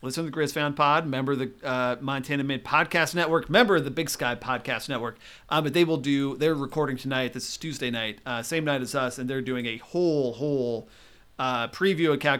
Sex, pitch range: male, 125-150 Hz